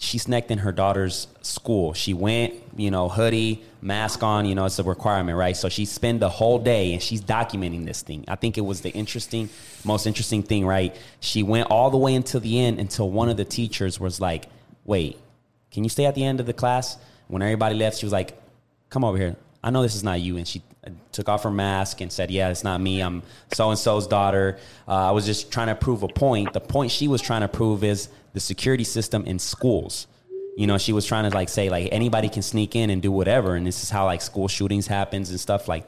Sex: male